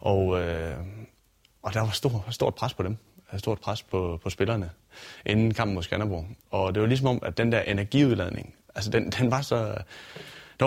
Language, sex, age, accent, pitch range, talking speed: Danish, male, 30-49, native, 95-120 Hz, 210 wpm